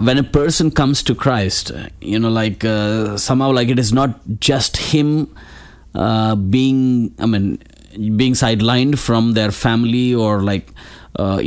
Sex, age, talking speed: male, 30-49, 150 wpm